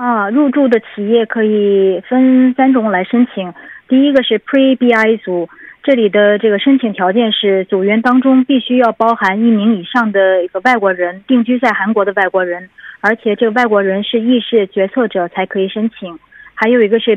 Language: Korean